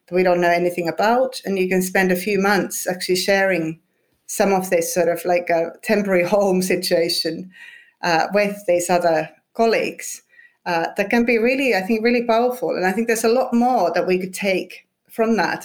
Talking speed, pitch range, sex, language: 195 wpm, 175-205 Hz, female, English